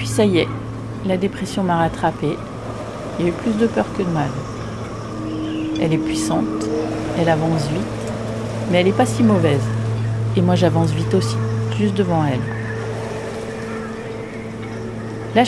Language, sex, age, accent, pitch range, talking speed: French, female, 40-59, French, 110-165 Hz, 150 wpm